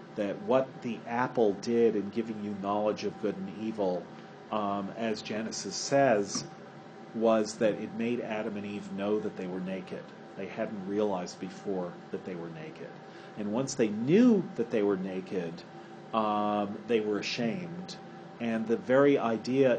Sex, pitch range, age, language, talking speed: male, 100-120 Hz, 40-59, English, 160 wpm